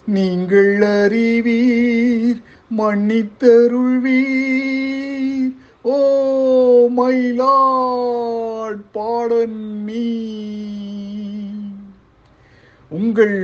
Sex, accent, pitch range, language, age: male, native, 185-265 Hz, Tamil, 50-69